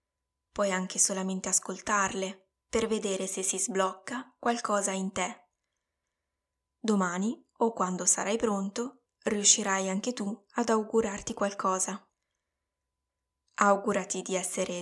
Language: Italian